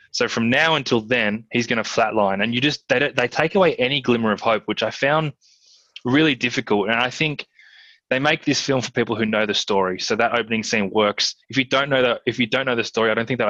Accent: Australian